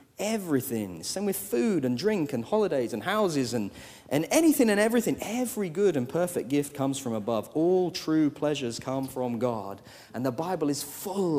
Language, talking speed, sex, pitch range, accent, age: English, 180 wpm, male, 155-230 Hz, British, 30-49